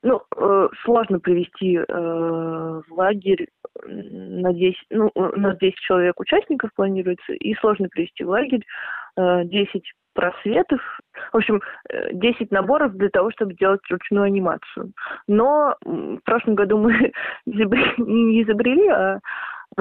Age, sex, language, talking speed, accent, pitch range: 20-39, female, Russian, 125 wpm, native, 185-230 Hz